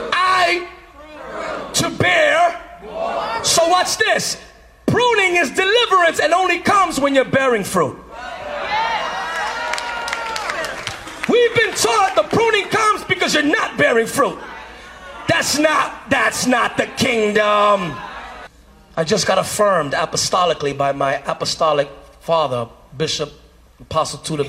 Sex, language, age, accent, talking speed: male, English, 40-59, American, 110 wpm